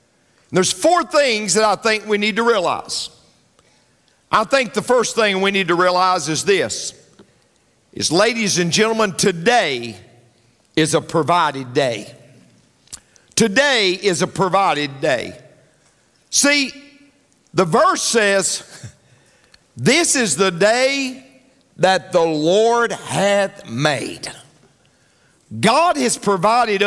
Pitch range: 180-255 Hz